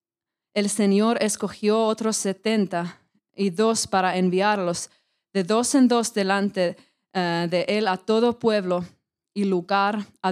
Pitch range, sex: 185-235 Hz, female